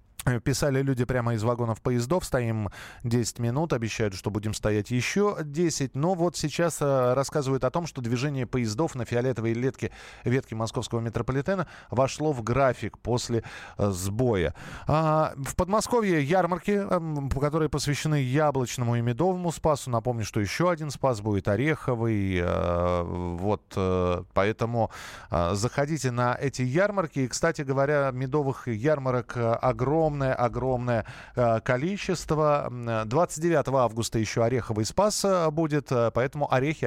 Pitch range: 115-150 Hz